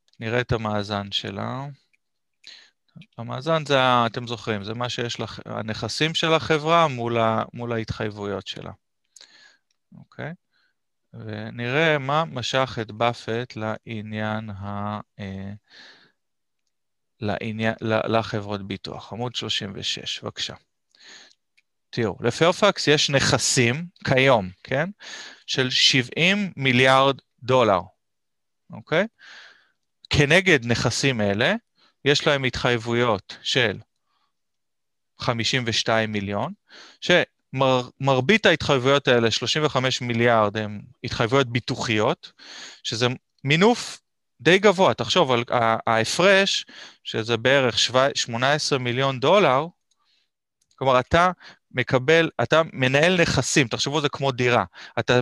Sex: male